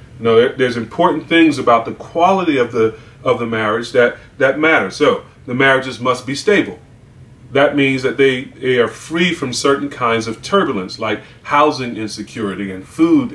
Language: English